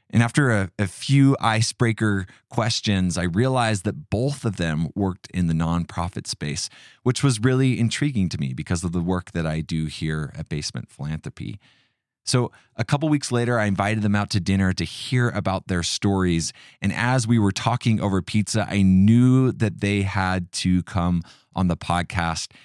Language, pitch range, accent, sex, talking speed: English, 90-120 Hz, American, male, 180 wpm